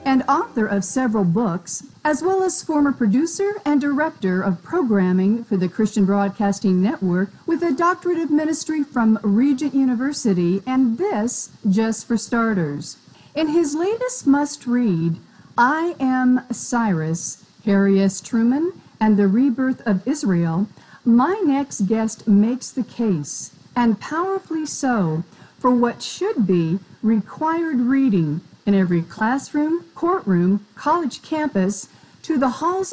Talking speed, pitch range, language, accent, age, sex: 130 wpm, 200-290 Hz, English, American, 50-69, female